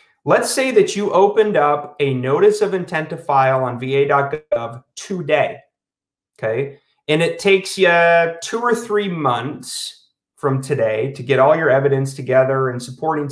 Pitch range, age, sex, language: 135-190 Hz, 30-49, male, English